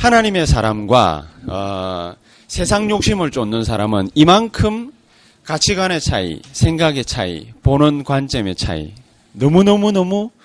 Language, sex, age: Korean, male, 30-49